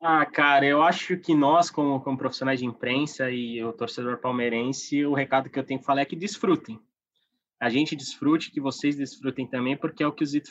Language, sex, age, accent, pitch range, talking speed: Portuguese, male, 20-39, Brazilian, 130-160 Hz, 215 wpm